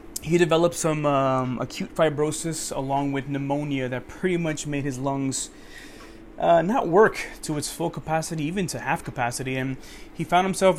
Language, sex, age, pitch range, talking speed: English, male, 20-39, 125-140 Hz, 165 wpm